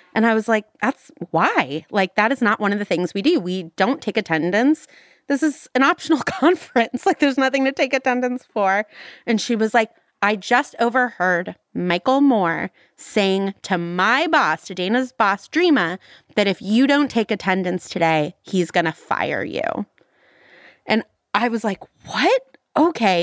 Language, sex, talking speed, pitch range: English, female, 170 wpm, 190-280 Hz